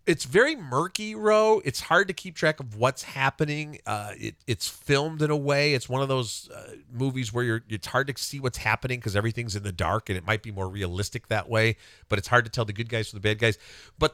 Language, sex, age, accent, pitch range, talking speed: English, male, 40-59, American, 110-145 Hz, 250 wpm